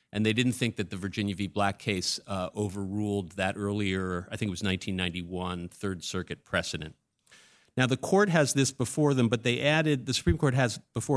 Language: English